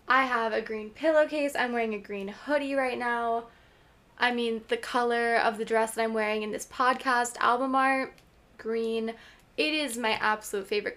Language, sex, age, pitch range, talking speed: English, female, 10-29, 230-280 Hz, 180 wpm